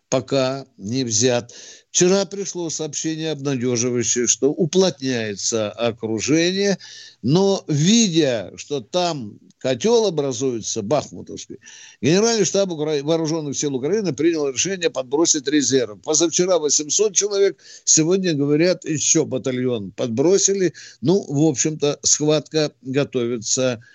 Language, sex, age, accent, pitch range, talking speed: Russian, male, 60-79, native, 130-175 Hz, 100 wpm